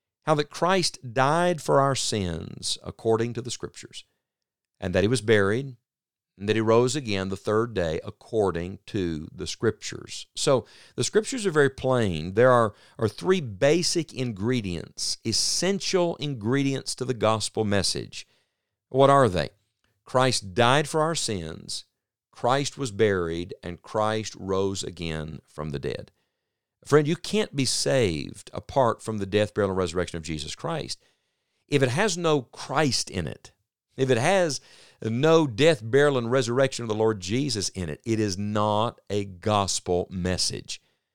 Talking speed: 155 wpm